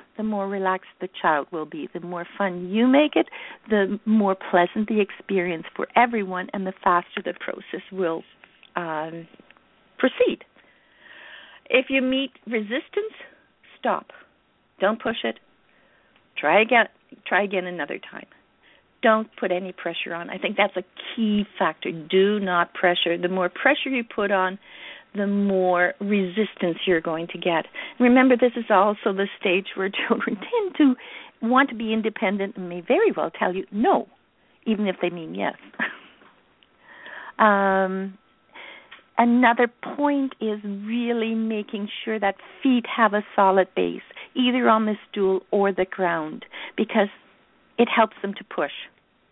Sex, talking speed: female, 145 wpm